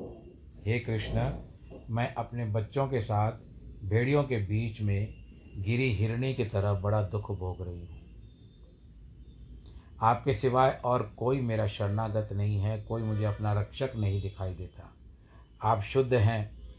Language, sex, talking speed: Hindi, male, 135 wpm